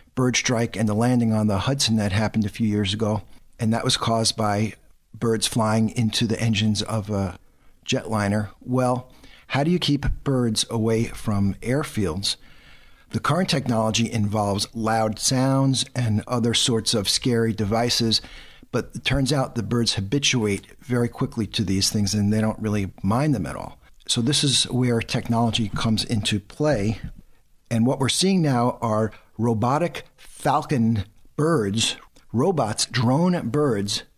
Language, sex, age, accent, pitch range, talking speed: English, male, 50-69, American, 110-130 Hz, 155 wpm